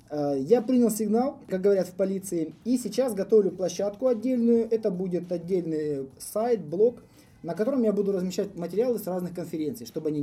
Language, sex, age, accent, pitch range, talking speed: Russian, male, 20-39, native, 160-215 Hz, 165 wpm